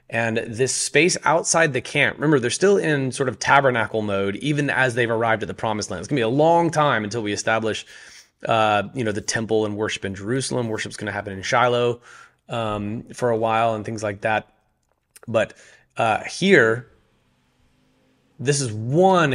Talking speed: 190 wpm